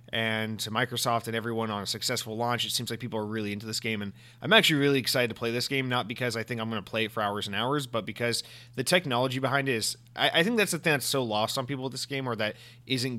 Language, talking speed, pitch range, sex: English, 290 wpm, 110-125 Hz, male